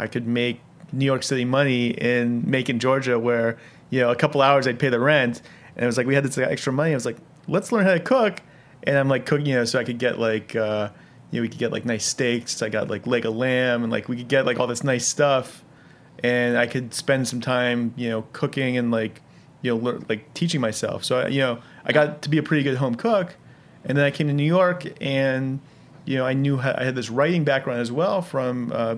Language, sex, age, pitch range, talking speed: English, male, 30-49, 120-140 Hz, 255 wpm